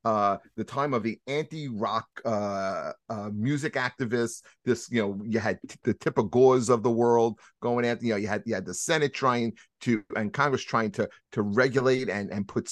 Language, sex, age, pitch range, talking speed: English, male, 30-49, 105-130 Hz, 210 wpm